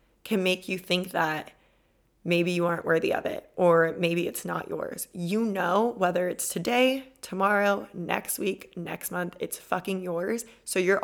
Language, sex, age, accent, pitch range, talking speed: English, female, 20-39, American, 175-210 Hz, 165 wpm